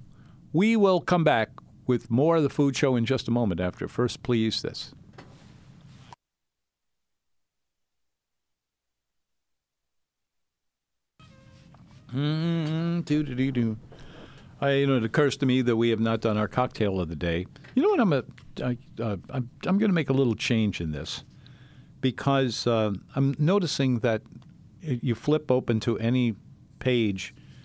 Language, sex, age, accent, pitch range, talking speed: English, male, 50-69, American, 110-140 Hz, 140 wpm